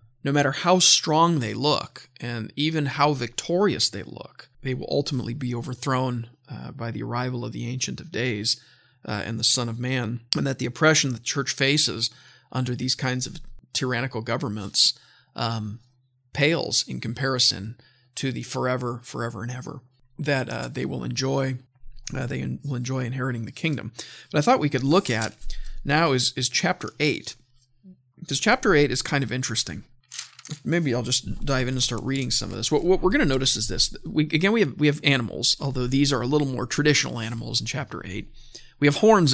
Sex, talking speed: male, 190 wpm